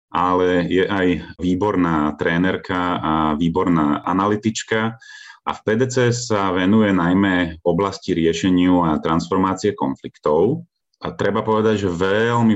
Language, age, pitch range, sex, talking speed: Slovak, 30-49, 85-105 Hz, male, 120 wpm